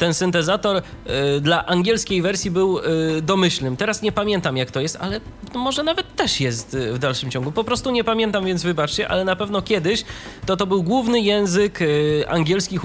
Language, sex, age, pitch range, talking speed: Polish, male, 20-39, 135-180 Hz, 175 wpm